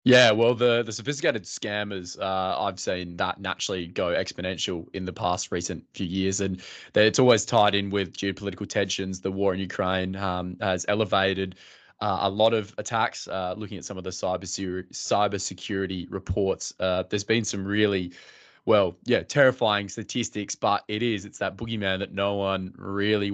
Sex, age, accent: male, 20-39, Australian